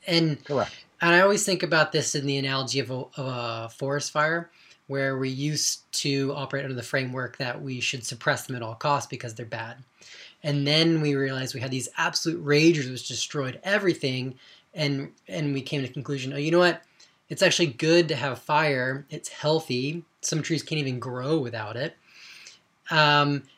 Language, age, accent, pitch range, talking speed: English, 20-39, American, 130-155 Hz, 190 wpm